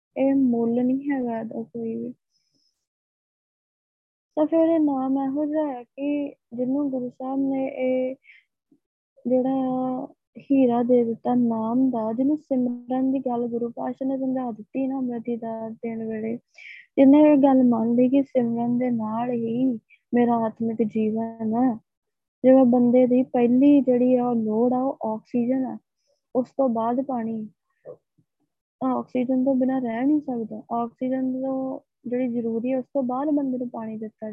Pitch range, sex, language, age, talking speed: 230-270 Hz, female, Punjabi, 20-39, 120 wpm